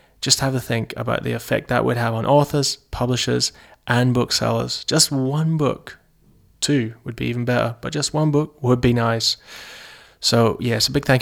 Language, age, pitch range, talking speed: English, 20-39, 120-140 Hz, 185 wpm